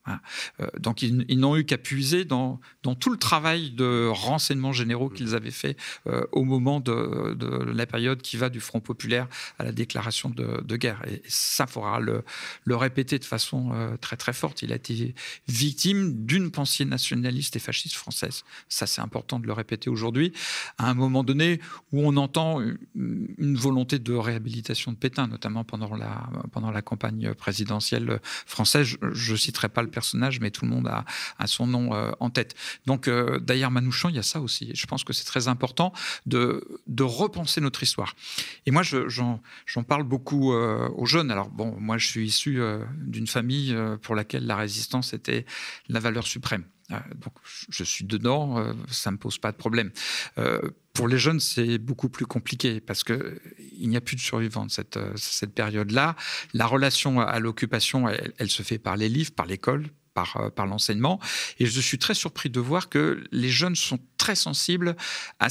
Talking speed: 200 wpm